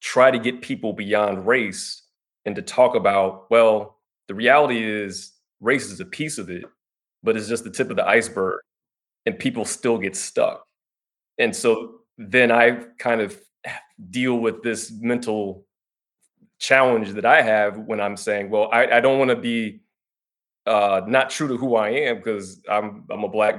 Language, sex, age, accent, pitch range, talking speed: English, male, 20-39, American, 100-120 Hz, 170 wpm